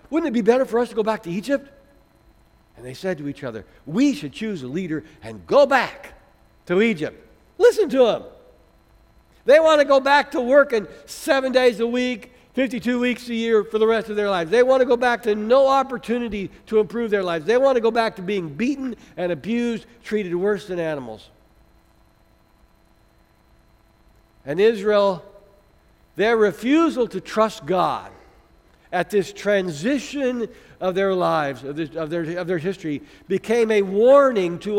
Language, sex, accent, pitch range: English, male, American, 150-235 Hz